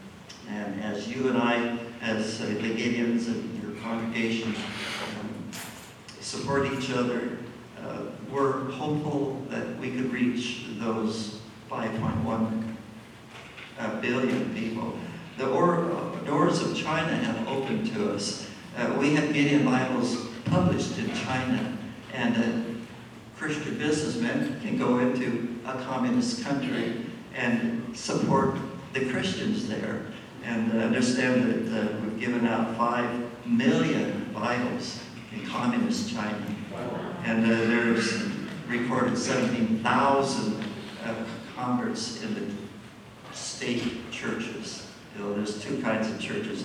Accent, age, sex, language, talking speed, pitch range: American, 60-79, male, English, 115 wpm, 115-140 Hz